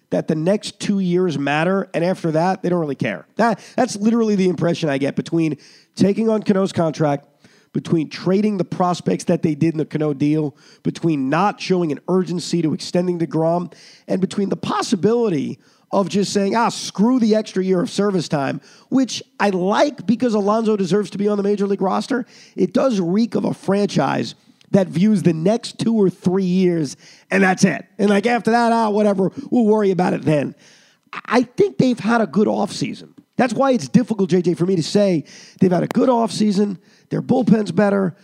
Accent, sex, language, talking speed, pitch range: American, male, English, 195 wpm, 175-225 Hz